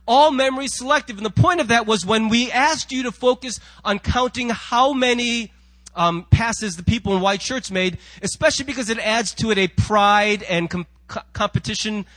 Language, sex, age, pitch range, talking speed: English, male, 30-49, 185-265 Hz, 185 wpm